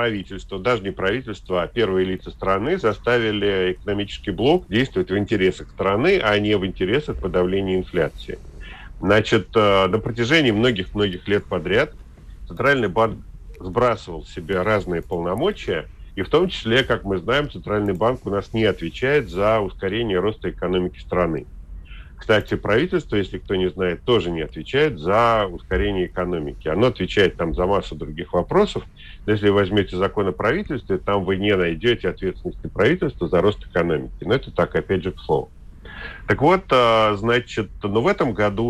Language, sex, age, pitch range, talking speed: Russian, male, 40-59, 90-110 Hz, 155 wpm